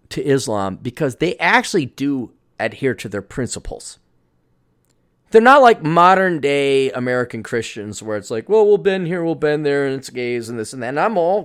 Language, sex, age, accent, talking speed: English, male, 30-49, American, 190 wpm